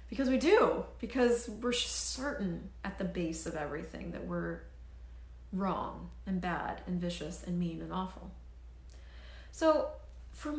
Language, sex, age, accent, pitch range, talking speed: English, female, 30-49, American, 165-210 Hz, 135 wpm